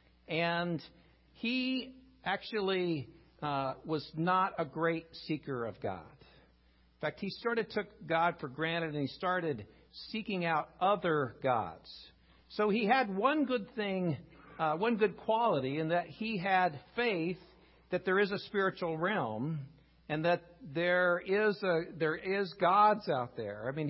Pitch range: 150-190 Hz